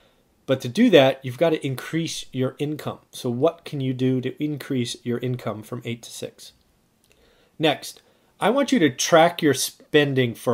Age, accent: 30-49, American